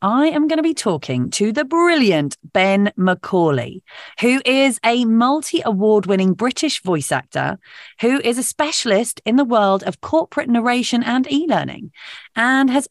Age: 30-49